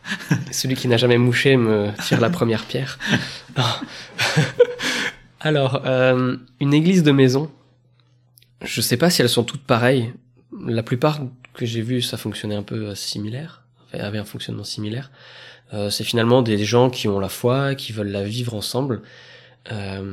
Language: French